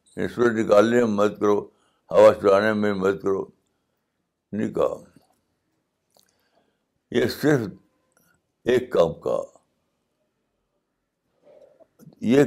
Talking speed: 65 wpm